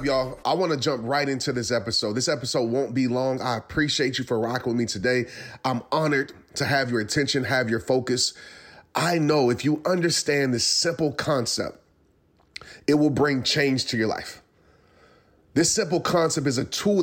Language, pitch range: English, 130-165 Hz